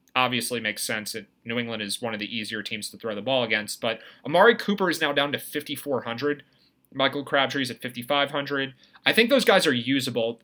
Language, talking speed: English, 205 wpm